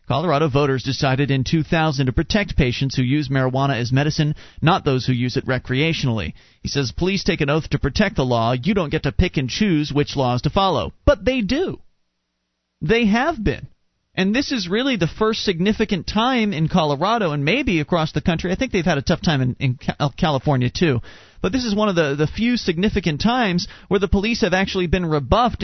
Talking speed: 210 wpm